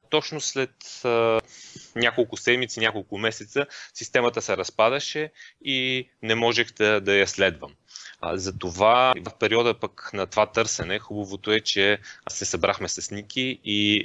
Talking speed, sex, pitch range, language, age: 145 wpm, male, 105-135 Hz, Bulgarian, 30-49